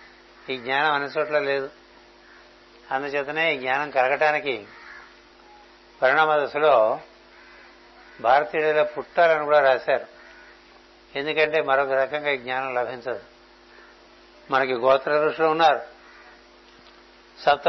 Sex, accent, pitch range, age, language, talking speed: male, native, 130-150 Hz, 60-79, Telugu, 85 wpm